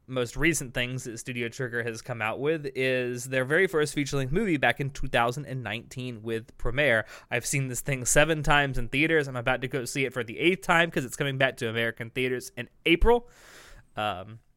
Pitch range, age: 115-140 Hz, 20-39